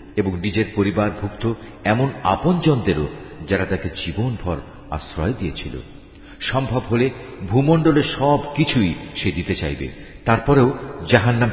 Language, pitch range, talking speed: Bengali, 95-130 Hz, 110 wpm